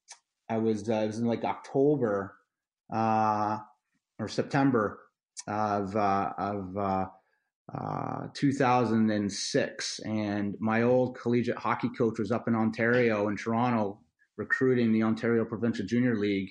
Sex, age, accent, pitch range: male, 30-49, American, 110-130 Hz